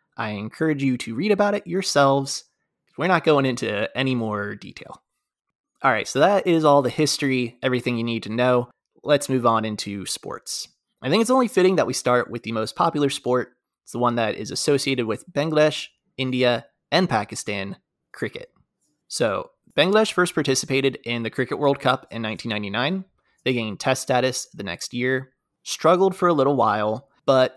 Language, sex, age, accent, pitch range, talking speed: English, male, 20-39, American, 120-160 Hz, 180 wpm